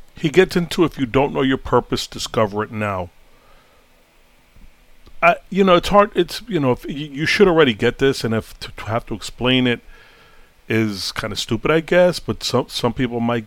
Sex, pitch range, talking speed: male, 115-150 Hz, 200 wpm